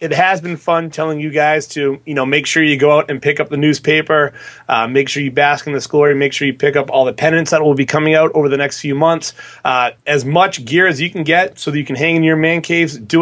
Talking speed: 290 wpm